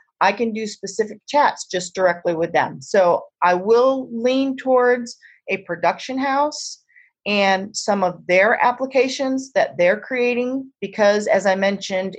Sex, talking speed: female, 145 wpm